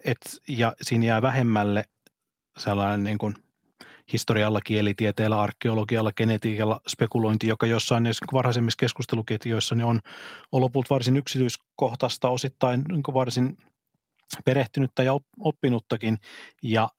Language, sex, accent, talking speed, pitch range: Finnish, male, native, 110 wpm, 105-120 Hz